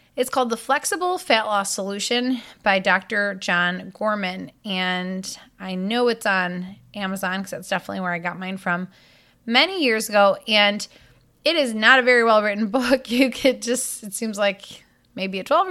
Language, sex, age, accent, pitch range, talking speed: English, female, 20-39, American, 190-235 Hz, 175 wpm